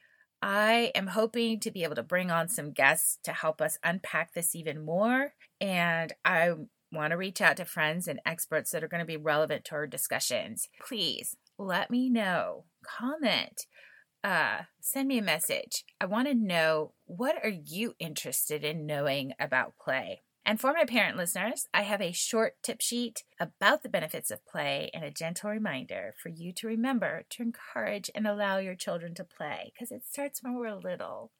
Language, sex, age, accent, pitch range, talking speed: English, female, 30-49, American, 170-240 Hz, 185 wpm